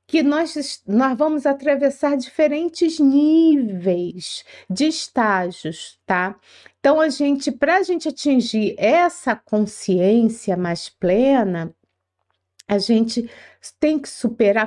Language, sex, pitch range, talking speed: Portuguese, female, 190-285 Hz, 105 wpm